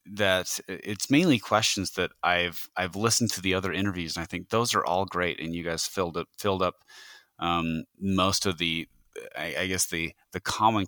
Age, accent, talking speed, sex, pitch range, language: 30-49, American, 200 wpm, male, 85-100 Hz, English